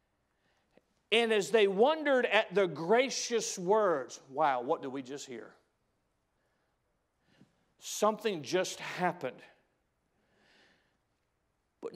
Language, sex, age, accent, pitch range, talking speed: English, male, 50-69, American, 160-250 Hz, 90 wpm